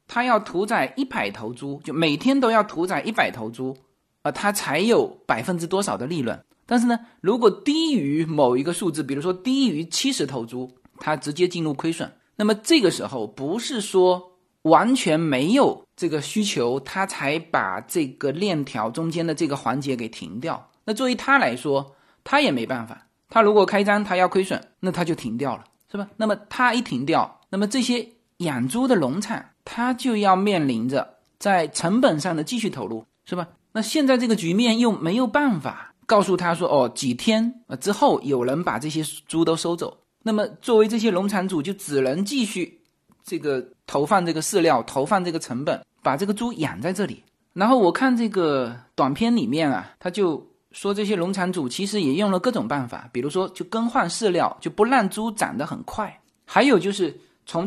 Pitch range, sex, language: 160-230 Hz, male, Chinese